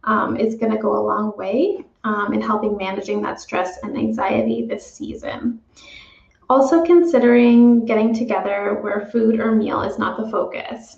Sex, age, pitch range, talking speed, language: female, 20-39, 210-260 Hz, 160 wpm, English